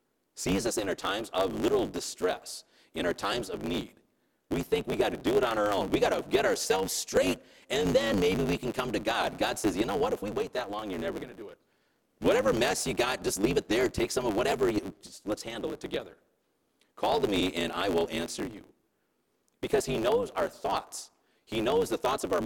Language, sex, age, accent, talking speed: English, male, 40-59, American, 240 wpm